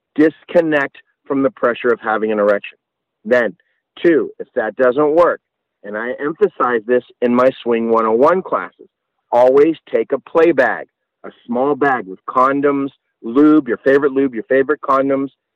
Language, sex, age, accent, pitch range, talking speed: English, male, 50-69, American, 130-180 Hz, 155 wpm